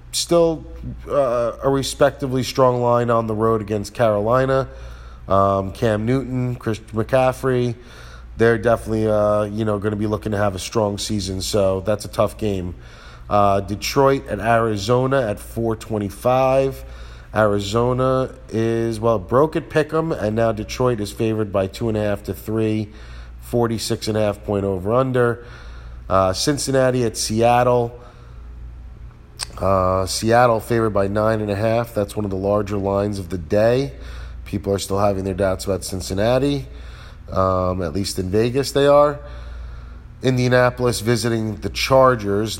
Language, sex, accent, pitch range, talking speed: English, male, American, 100-120 Hz, 150 wpm